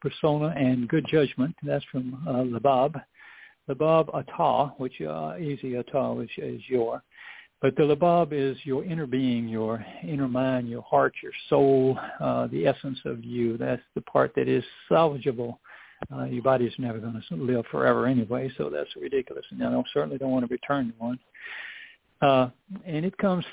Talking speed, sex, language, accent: 175 wpm, male, English, American